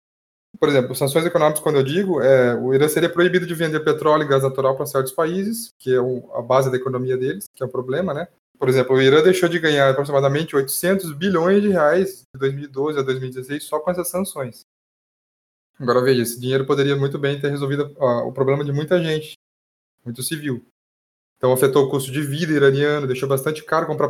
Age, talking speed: 20-39, 205 wpm